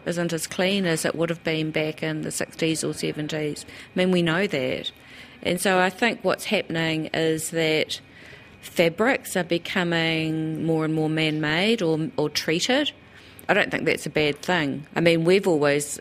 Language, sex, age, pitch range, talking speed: English, female, 40-59, 150-180 Hz, 175 wpm